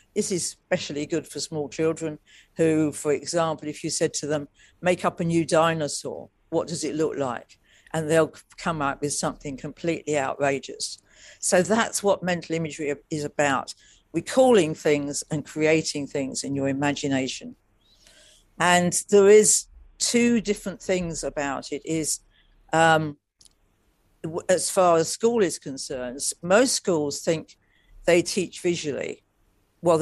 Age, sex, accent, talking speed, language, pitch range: 50-69, female, British, 145 wpm, English, 145-175 Hz